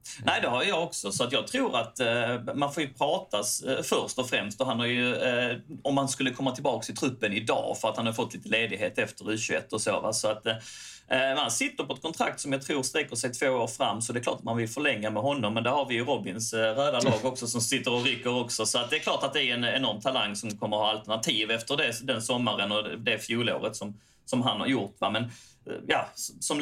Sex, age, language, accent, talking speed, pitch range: male, 30-49, Swedish, native, 265 wpm, 110-135 Hz